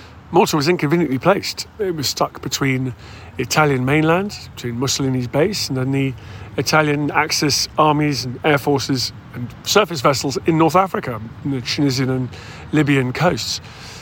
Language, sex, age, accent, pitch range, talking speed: English, male, 40-59, British, 125-150 Hz, 140 wpm